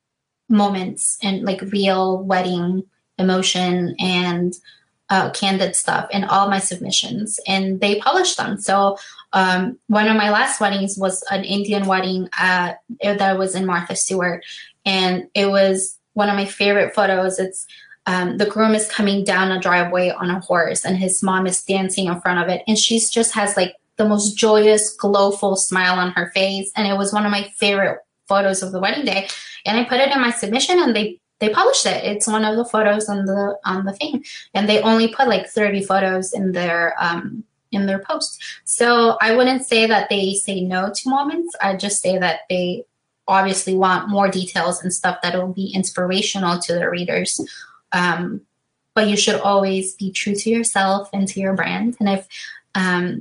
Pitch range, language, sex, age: 185-210 Hz, English, female, 20-39